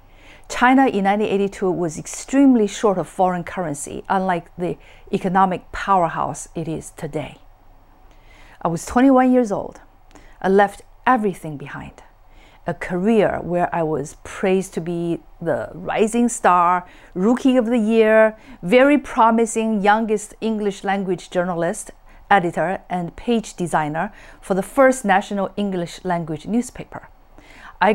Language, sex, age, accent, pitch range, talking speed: English, female, 50-69, Chinese, 170-225 Hz, 125 wpm